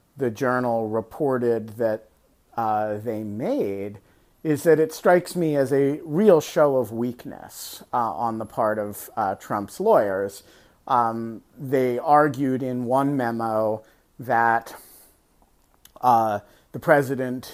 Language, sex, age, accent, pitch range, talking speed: English, male, 40-59, American, 110-130 Hz, 125 wpm